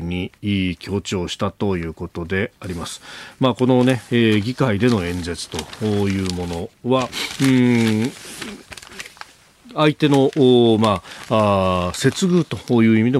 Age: 40-59